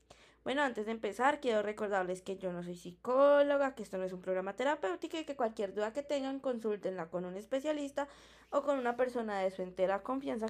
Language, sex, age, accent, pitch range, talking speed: Spanish, female, 20-39, Colombian, 200-255 Hz, 205 wpm